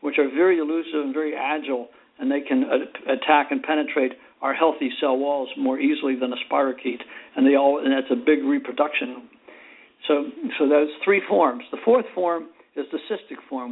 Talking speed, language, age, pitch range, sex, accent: 185 wpm, English, 60-79, 140-220 Hz, male, American